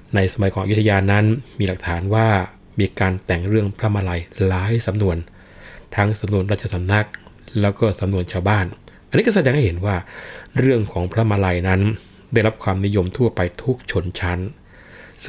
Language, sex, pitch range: Thai, male, 90-110 Hz